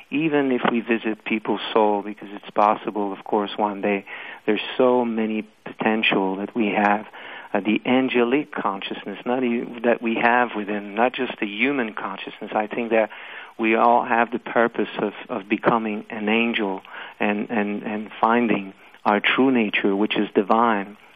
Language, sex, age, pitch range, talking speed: English, male, 50-69, 105-120 Hz, 165 wpm